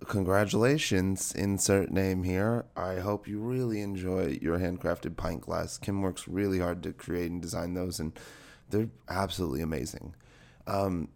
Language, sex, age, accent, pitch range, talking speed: English, male, 30-49, American, 90-115 Hz, 145 wpm